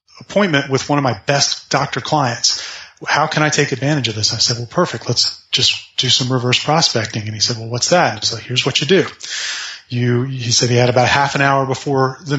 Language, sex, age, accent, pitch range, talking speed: English, male, 30-49, American, 125-145 Hz, 230 wpm